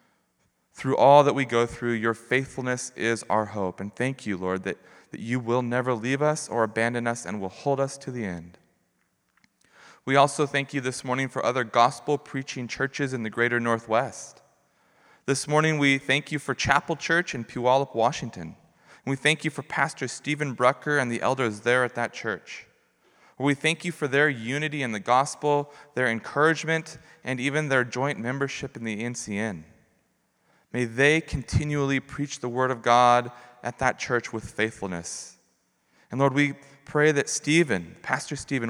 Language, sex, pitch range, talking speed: English, male, 115-140 Hz, 170 wpm